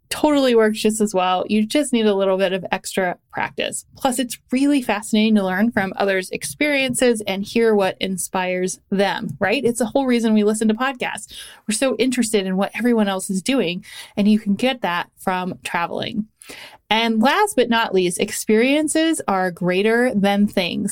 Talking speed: 180 wpm